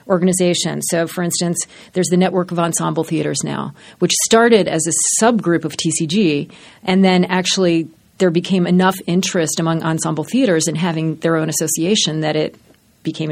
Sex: female